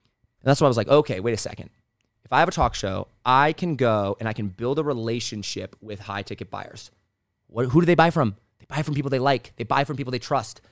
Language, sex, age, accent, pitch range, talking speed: English, male, 30-49, American, 110-170 Hz, 265 wpm